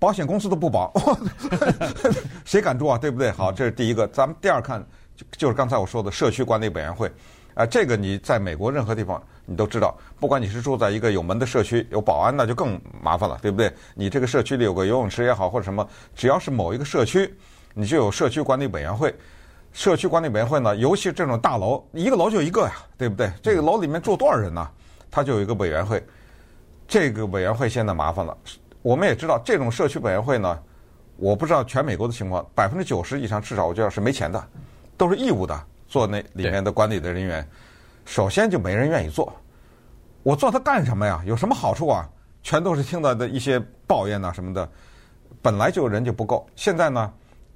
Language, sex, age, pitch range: Chinese, male, 50-69, 100-135 Hz